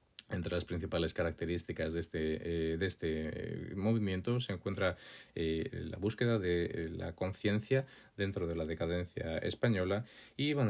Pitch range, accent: 85-105 Hz, Spanish